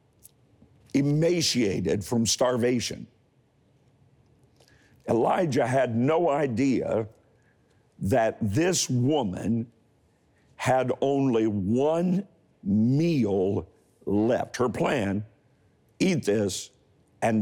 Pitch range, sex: 115-150 Hz, male